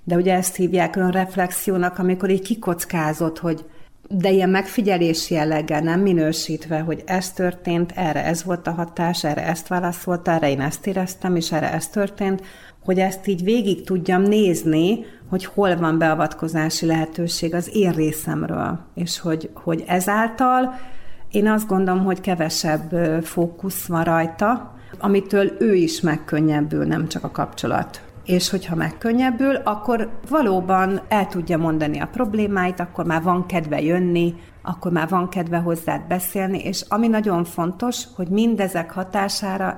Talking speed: 145 wpm